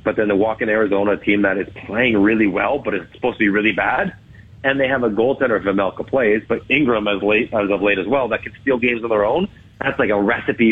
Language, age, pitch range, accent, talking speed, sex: English, 40-59, 110-140 Hz, American, 265 wpm, male